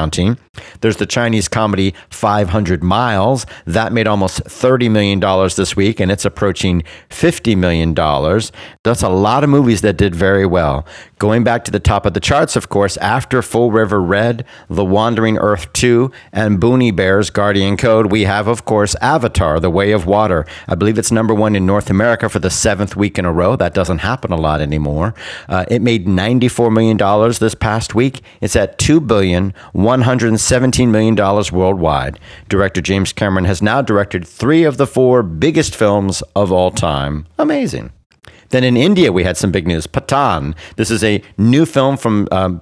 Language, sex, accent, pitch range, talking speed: English, male, American, 95-115 Hz, 175 wpm